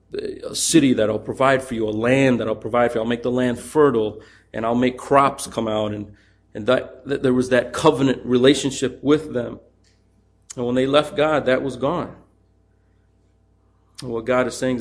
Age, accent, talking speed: 40-59, American, 200 wpm